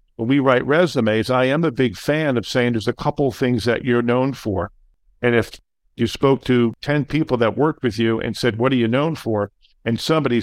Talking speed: 225 wpm